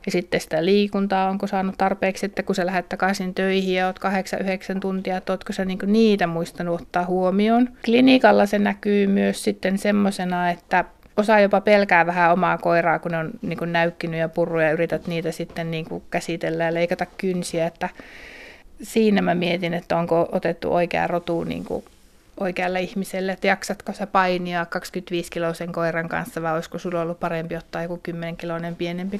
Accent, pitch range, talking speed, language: native, 170-200 Hz, 165 wpm, Finnish